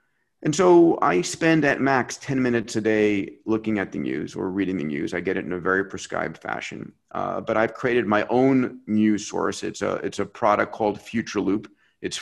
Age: 40-59